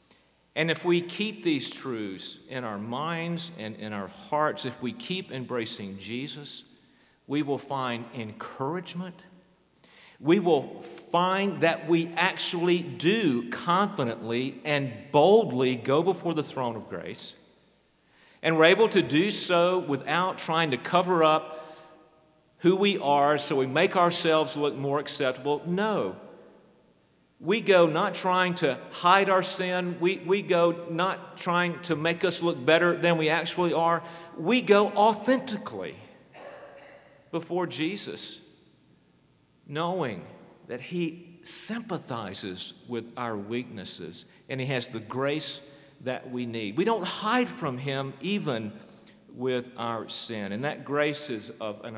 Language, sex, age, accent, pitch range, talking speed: English, male, 50-69, American, 130-180 Hz, 135 wpm